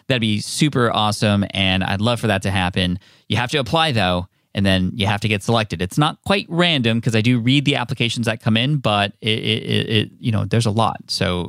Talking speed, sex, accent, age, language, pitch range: 240 wpm, male, American, 20-39, English, 100-130 Hz